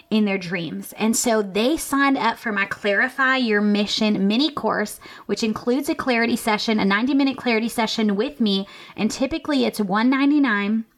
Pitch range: 195-245 Hz